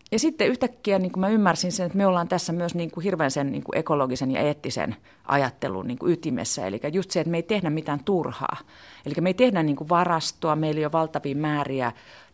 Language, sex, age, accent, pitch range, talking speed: Finnish, female, 40-59, native, 135-175 Hz, 180 wpm